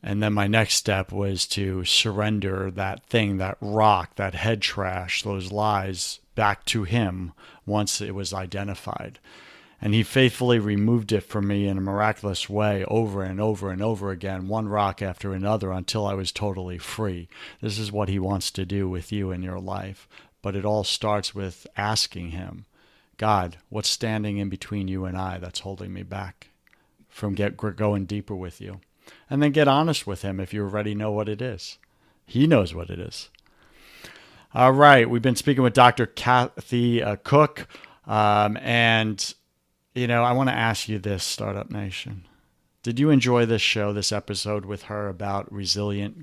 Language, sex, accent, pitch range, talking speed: English, male, American, 95-115 Hz, 180 wpm